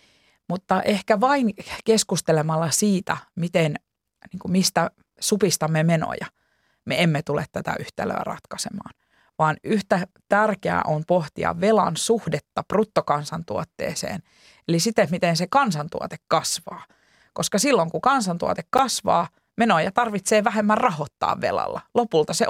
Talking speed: 110 wpm